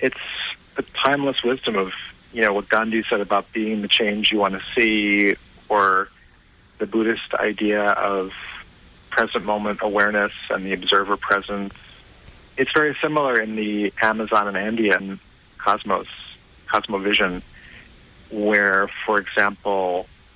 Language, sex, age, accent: English, male, 40-59, American